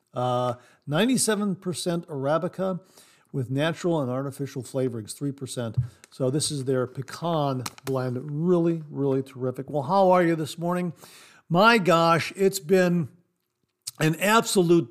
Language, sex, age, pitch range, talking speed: English, male, 50-69, 140-185 Hz, 120 wpm